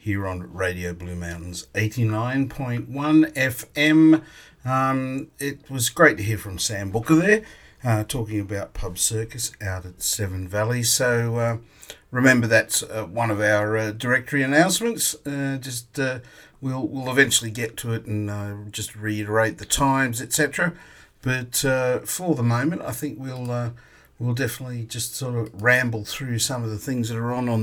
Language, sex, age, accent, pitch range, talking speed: English, male, 50-69, Australian, 110-130 Hz, 175 wpm